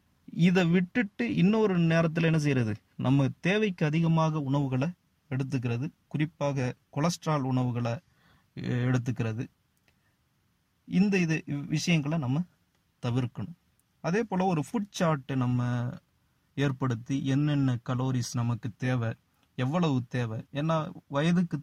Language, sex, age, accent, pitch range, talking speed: Tamil, male, 30-49, native, 130-165 Hz, 90 wpm